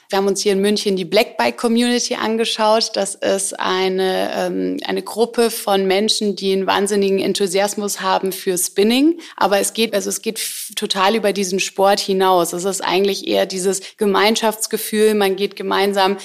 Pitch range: 190-210 Hz